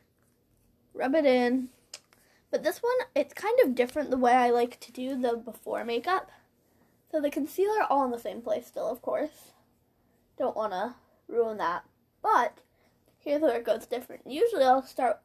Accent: American